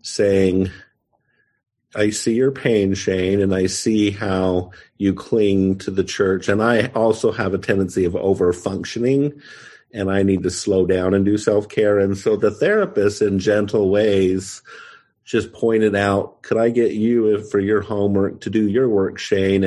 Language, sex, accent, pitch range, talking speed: English, male, American, 95-110 Hz, 165 wpm